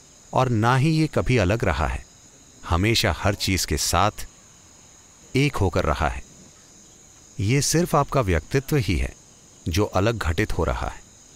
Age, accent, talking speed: 40-59, native, 155 wpm